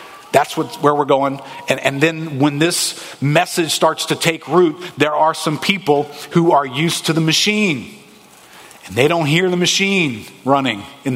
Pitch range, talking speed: 135-180 Hz, 170 wpm